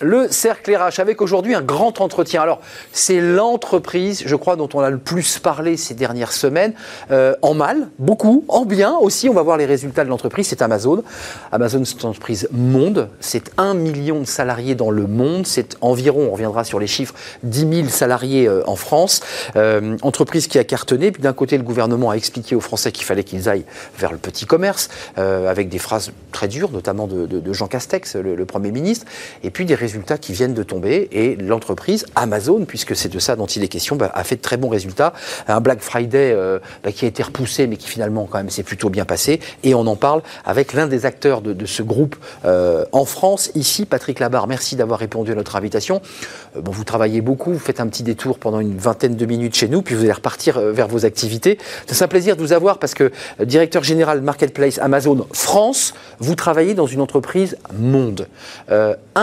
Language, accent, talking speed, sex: French, French, 215 wpm, male